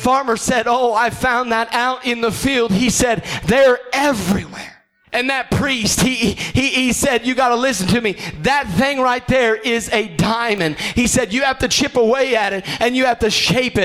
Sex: male